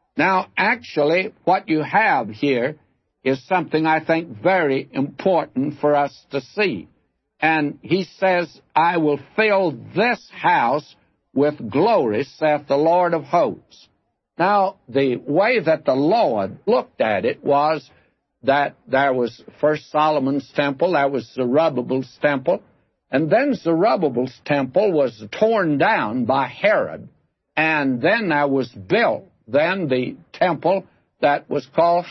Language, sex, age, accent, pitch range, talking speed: English, male, 60-79, American, 140-180 Hz, 135 wpm